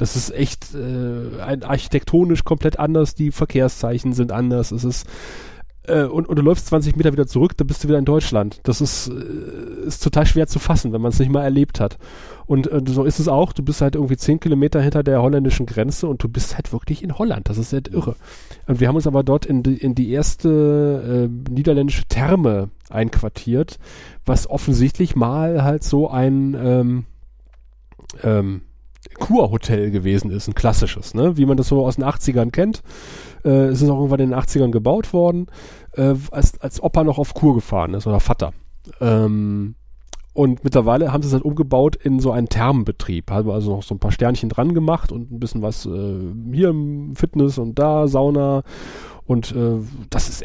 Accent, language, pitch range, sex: German, German, 115-145 Hz, male